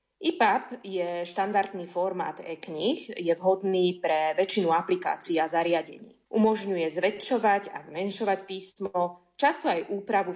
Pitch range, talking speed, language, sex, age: 170-205 Hz, 115 wpm, Slovak, female, 30-49